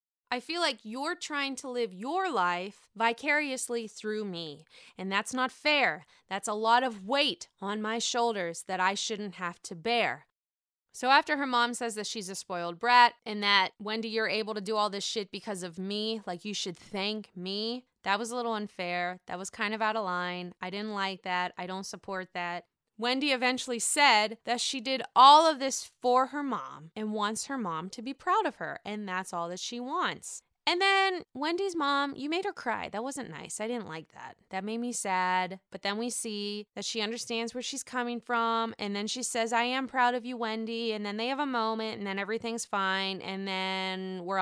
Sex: female